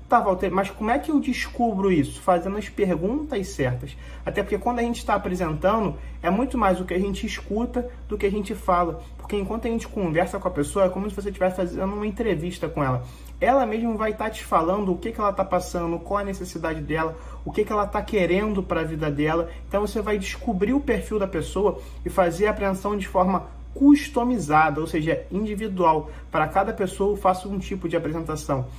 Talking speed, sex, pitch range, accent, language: 220 wpm, male, 170-205 Hz, Brazilian, Portuguese